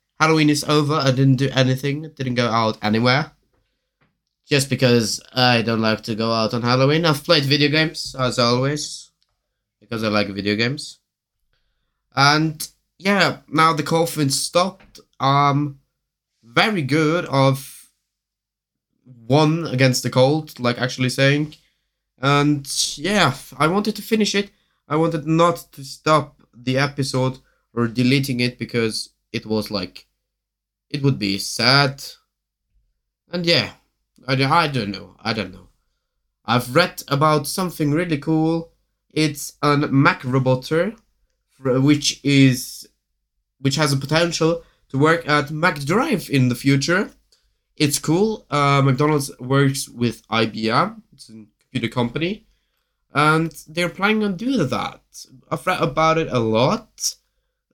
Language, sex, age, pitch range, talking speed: English, male, 20-39, 125-160 Hz, 135 wpm